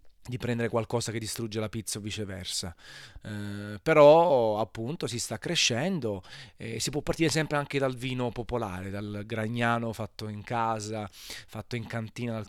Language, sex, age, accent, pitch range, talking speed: Italian, male, 20-39, native, 105-130 Hz, 160 wpm